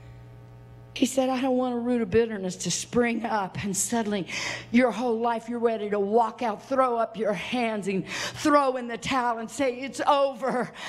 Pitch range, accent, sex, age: 170-270 Hz, American, female, 50-69